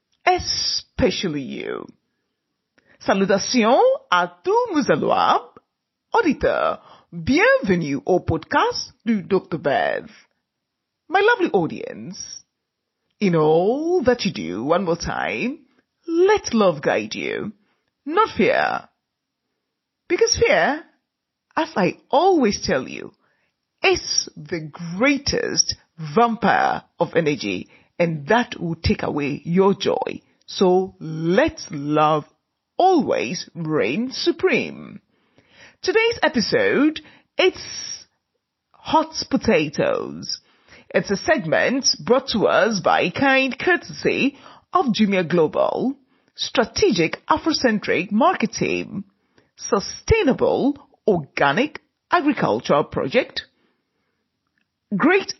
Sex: female